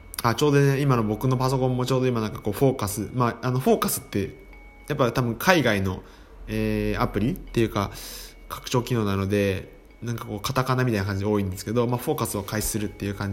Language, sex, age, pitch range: Japanese, male, 20-39, 105-140 Hz